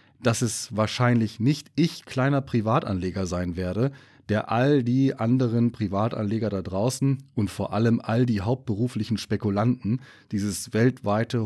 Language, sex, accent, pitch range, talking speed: German, male, German, 100-125 Hz, 130 wpm